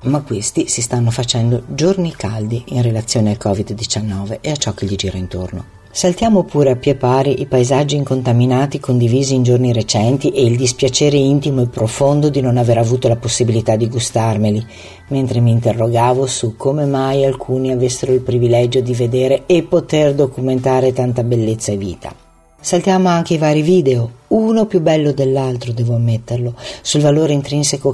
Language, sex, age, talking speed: Italian, female, 50-69, 165 wpm